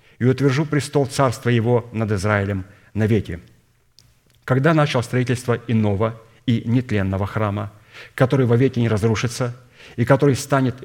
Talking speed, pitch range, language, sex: 135 wpm, 105-130 Hz, Russian, male